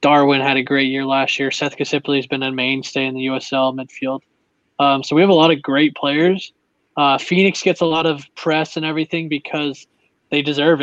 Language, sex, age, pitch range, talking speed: English, male, 20-39, 135-150 Hz, 210 wpm